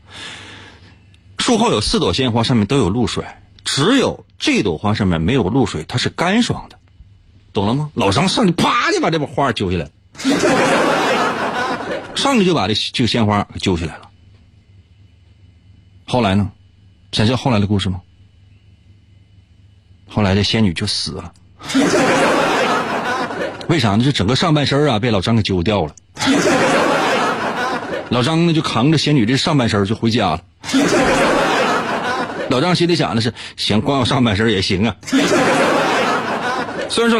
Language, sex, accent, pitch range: Chinese, male, native, 95-125 Hz